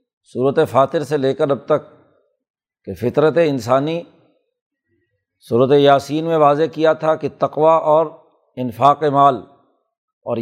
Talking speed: 125 wpm